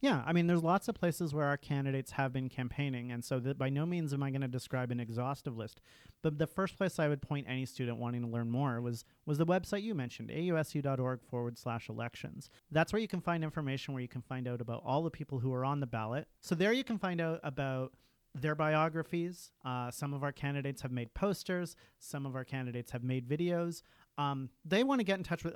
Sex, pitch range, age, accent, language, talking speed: male, 125-160 Hz, 40-59, American, English, 240 wpm